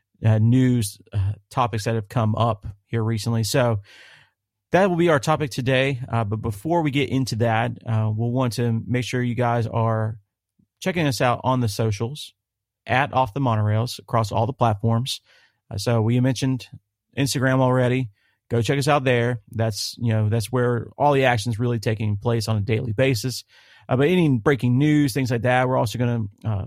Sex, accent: male, American